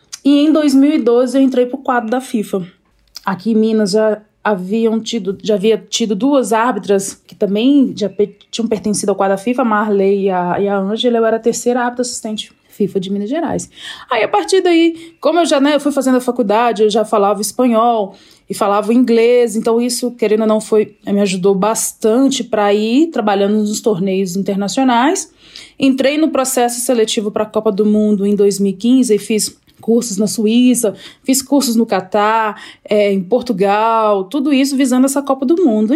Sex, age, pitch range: female, 20-39, 205-255 Hz